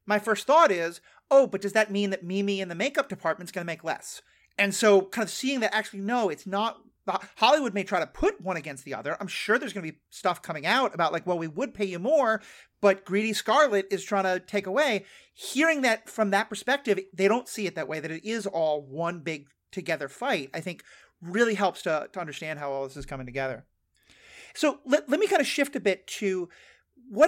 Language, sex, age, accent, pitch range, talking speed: English, male, 40-59, American, 165-220 Hz, 235 wpm